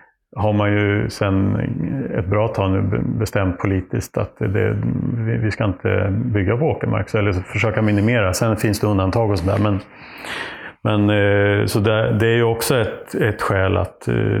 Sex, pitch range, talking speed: male, 95-110 Hz, 155 wpm